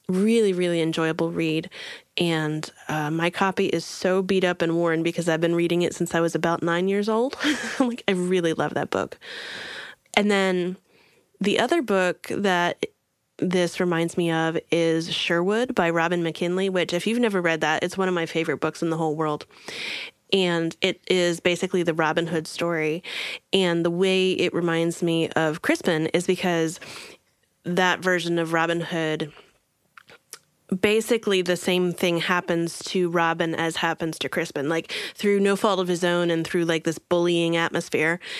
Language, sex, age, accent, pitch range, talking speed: English, female, 20-39, American, 165-185 Hz, 170 wpm